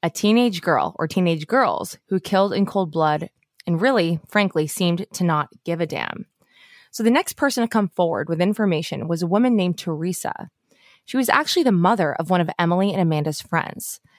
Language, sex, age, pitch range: English, female, 20-39, 175-235 Hz